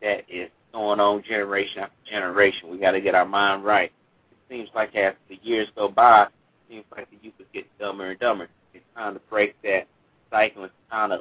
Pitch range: 100-110 Hz